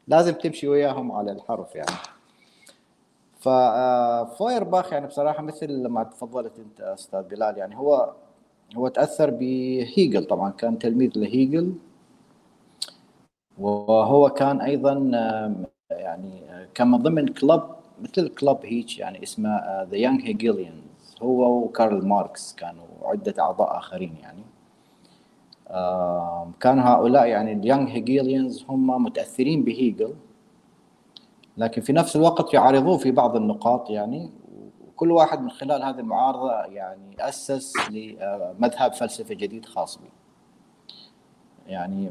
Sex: male